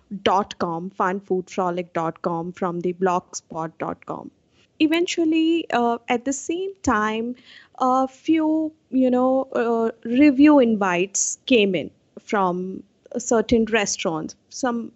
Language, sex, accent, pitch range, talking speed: English, female, Indian, 195-255 Hz, 100 wpm